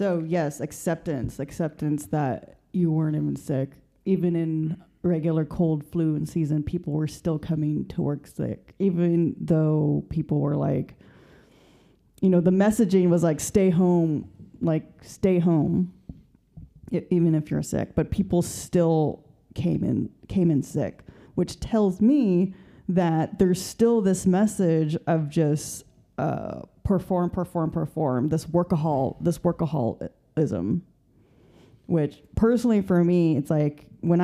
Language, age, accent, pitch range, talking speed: English, 30-49, American, 155-180 Hz, 135 wpm